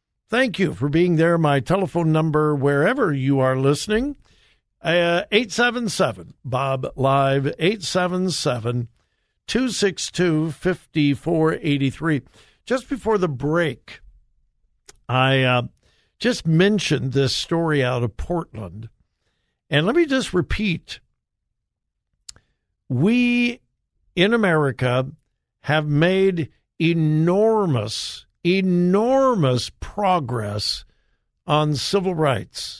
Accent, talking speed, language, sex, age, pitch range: American, 80 wpm, English, male, 60-79, 135-190 Hz